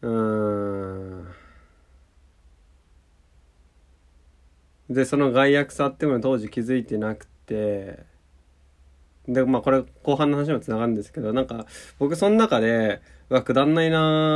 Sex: male